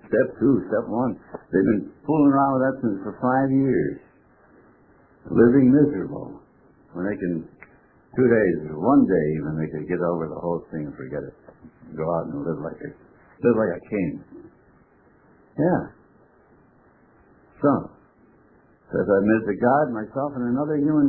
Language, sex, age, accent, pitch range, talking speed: English, male, 60-79, American, 110-155 Hz, 160 wpm